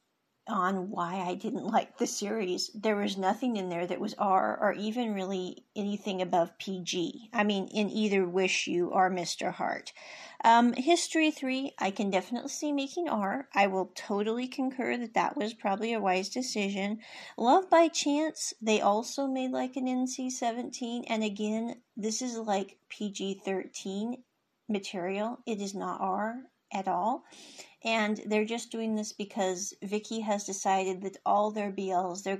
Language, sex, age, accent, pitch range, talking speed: English, female, 40-59, American, 195-240 Hz, 155 wpm